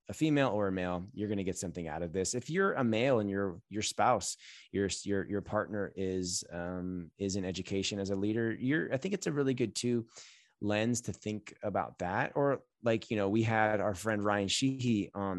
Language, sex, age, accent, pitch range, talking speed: English, male, 20-39, American, 100-135 Hz, 220 wpm